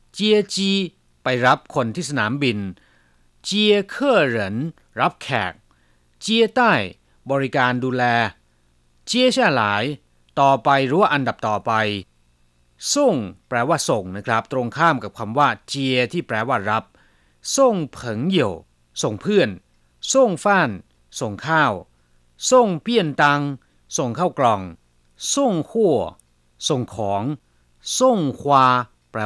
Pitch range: 95-145 Hz